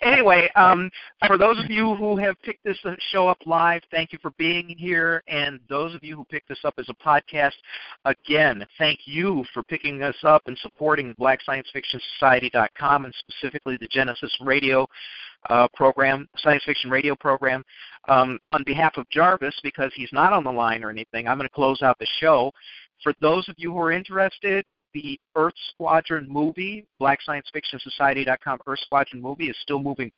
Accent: American